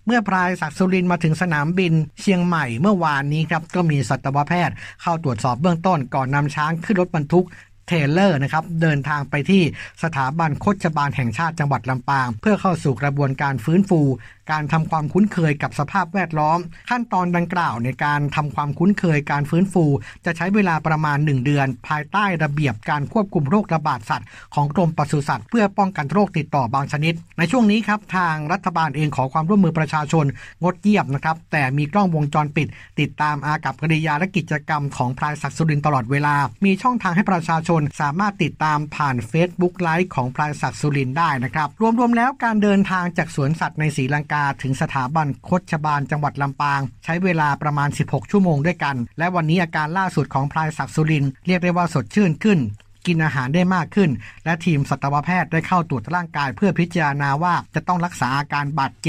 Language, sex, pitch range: Thai, male, 145-180 Hz